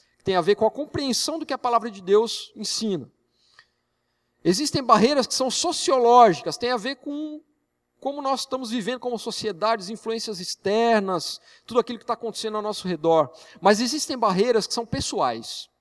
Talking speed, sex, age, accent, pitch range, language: 165 wpm, male, 50-69, Brazilian, 165-235 Hz, Portuguese